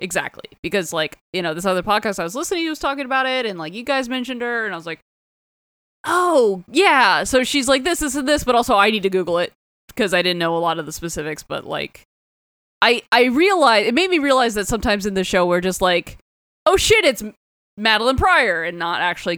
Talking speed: 235 wpm